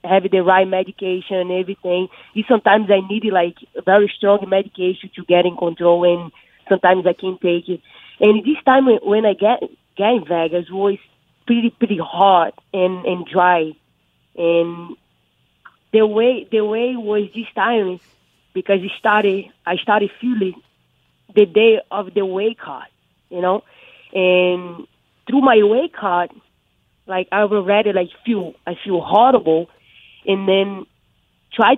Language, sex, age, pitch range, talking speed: English, female, 20-39, 180-215 Hz, 145 wpm